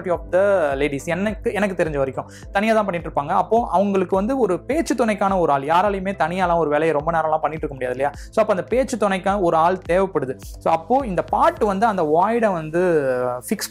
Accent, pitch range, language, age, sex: native, 150-205 Hz, Tamil, 20-39, male